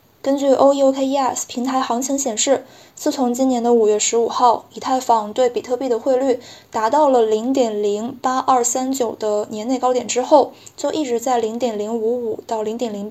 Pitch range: 230-265 Hz